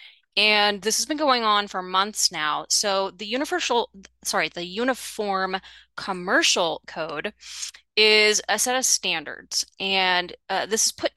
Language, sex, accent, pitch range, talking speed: English, female, American, 185-235 Hz, 145 wpm